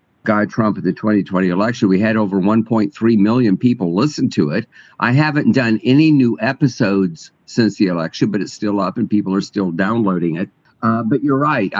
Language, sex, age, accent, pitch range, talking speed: English, male, 50-69, American, 95-120 Hz, 195 wpm